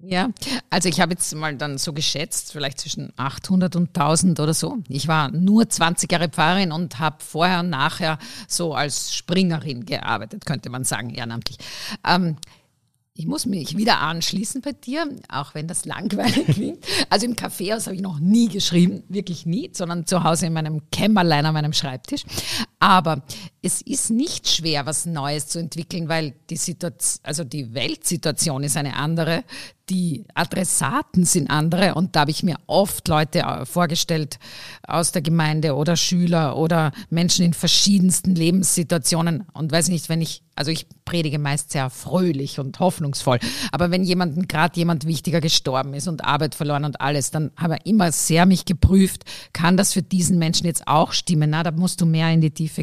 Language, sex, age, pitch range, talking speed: German, female, 50-69, 150-180 Hz, 175 wpm